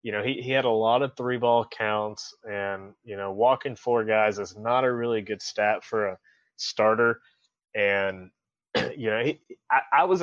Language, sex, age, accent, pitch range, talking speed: English, male, 20-39, American, 105-120 Hz, 195 wpm